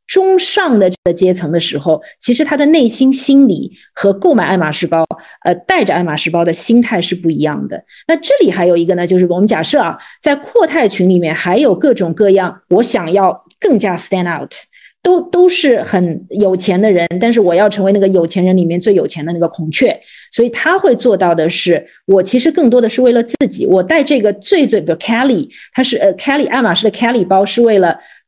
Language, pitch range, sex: Chinese, 180-275 Hz, female